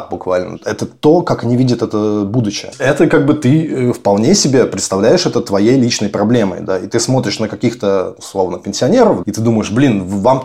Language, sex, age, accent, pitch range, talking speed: Russian, male, 20-39, native, 100-130 Hz, 185 wpm